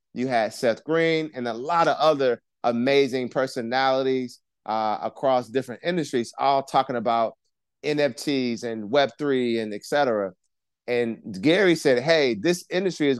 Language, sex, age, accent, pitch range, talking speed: English, male, 30-49, American, 120-145 Hz, 140 wpm